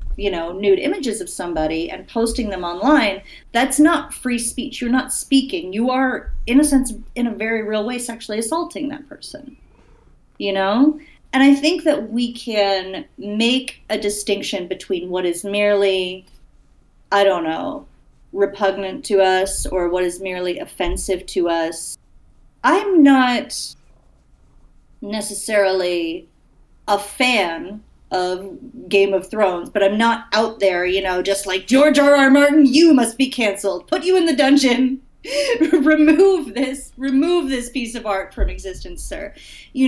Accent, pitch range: American, 190-270 Hz